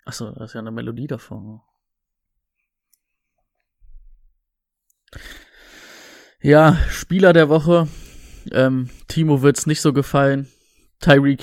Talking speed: 100 wpm